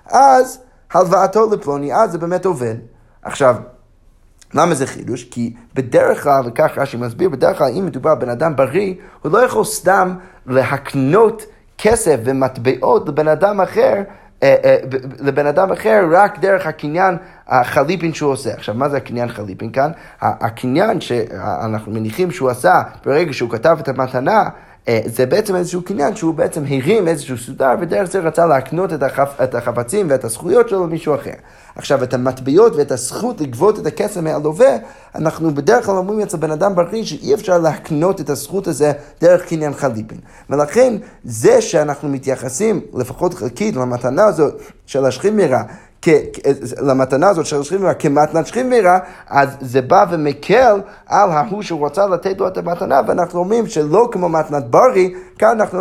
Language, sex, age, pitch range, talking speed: Hebrew, male, 30-49, 135-195 Hz, 160 wpm